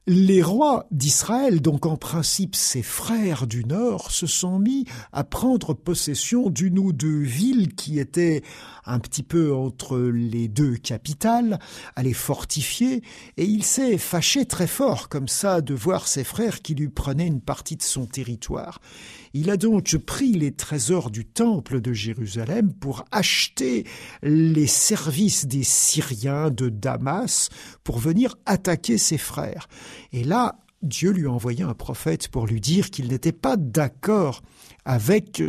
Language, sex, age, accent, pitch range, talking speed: French, male, 50-69, French, 130-190 Hz, 155 wpm